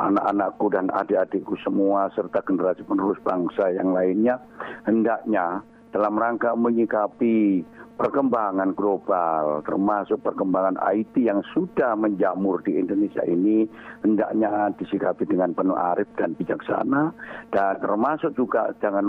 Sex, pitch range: male, 95-120 Hz